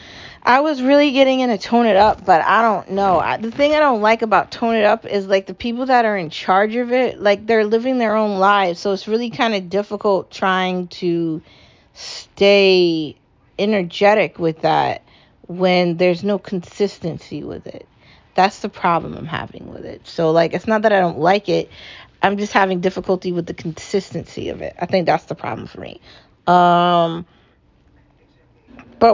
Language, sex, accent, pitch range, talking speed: English, female, American, 175-205 Hz, 185 wpm